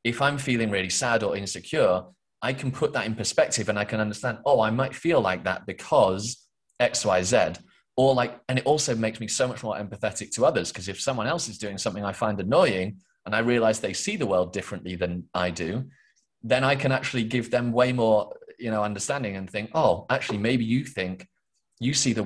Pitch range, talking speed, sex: 100-120 Hz, 220 wpm, male